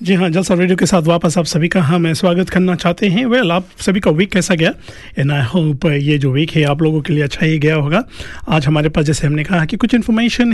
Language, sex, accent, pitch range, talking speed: Hindi, male, native, 150-185 Hz, 270 wpm